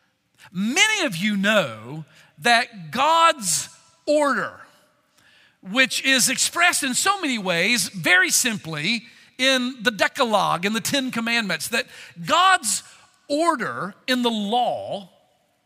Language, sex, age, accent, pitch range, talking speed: English, male, 50-69, American, 215-285 Hz, 110 wpm